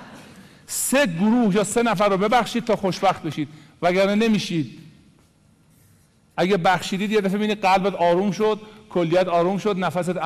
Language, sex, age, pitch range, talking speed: Persian, male, 50-69, 165-230 Hz, 140 wpm